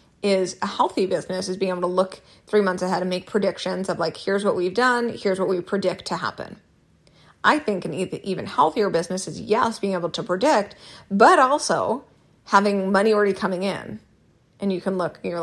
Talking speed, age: 200 wpm, 30-49